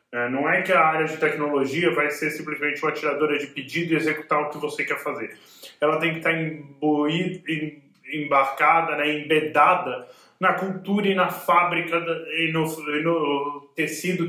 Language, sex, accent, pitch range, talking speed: Portuguese, male, Brazilian, 145-170 Hz, 170 wpm